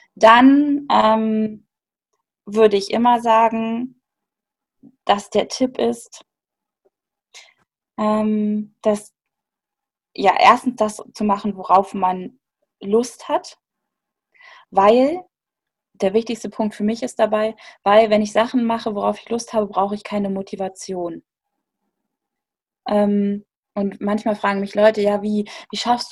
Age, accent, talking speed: 20-39, German, 120 wpm